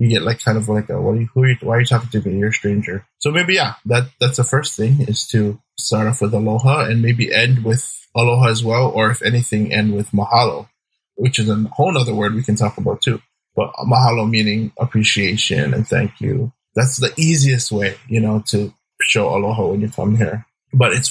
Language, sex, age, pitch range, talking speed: English, male, 20-39, 105-125 Hz, 225 wpm